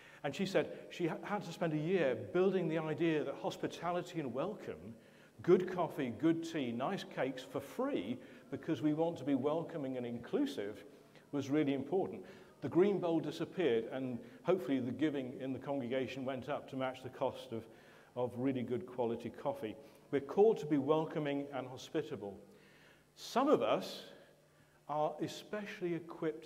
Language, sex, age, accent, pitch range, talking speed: English, male, 50-69, British, 140-195 Hz, 160 wpm